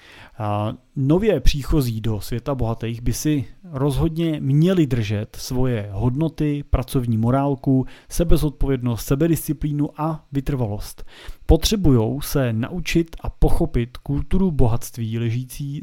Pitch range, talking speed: 115-145 Hz, 100 wpm